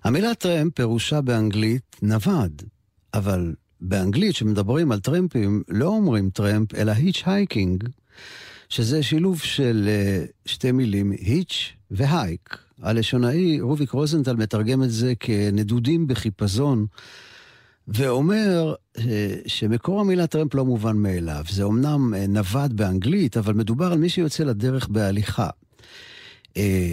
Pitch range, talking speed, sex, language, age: 105-160 Hz, 120 wpm, male, Hebrew, 50-69